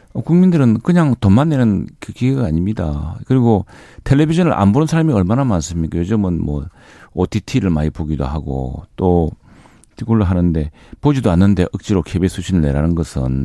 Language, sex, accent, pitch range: Korean, male, native, 85-110 Hz